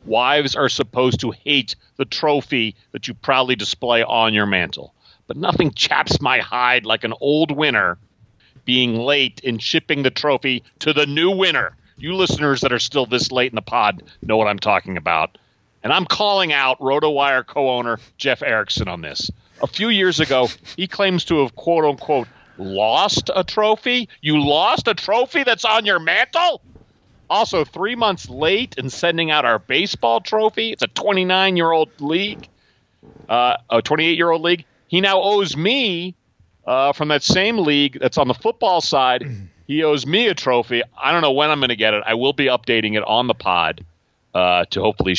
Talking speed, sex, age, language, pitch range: 180 wpm, male, 40-59, English, 120-175 Hz